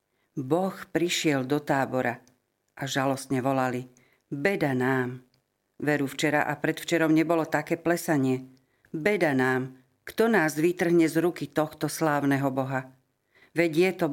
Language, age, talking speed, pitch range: Slovak, 50-69, 125 wpm, 135-170 Hz